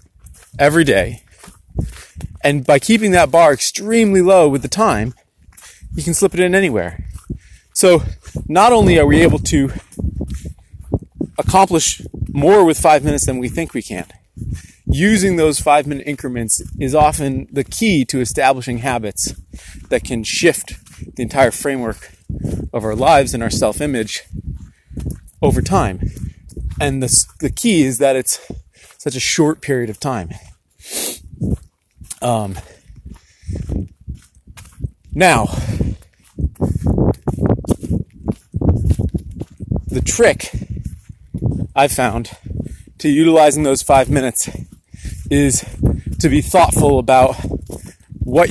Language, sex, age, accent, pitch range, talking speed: English, male, 30-49, American, 100-150 Hz, 115 wpm